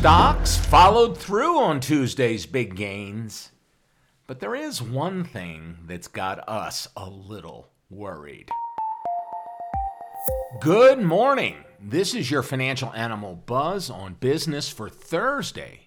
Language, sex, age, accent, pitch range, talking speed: English, male, 50-69, American, 90-145 Hz, 115 wpm